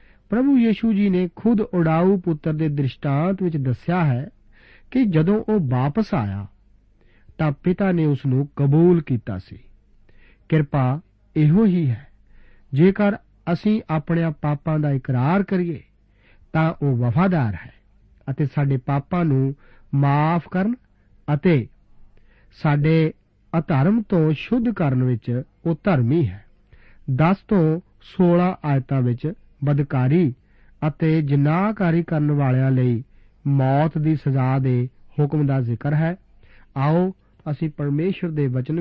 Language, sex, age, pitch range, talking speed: Punjabi, male, 50-69, 125-175 Hz, 85 wpm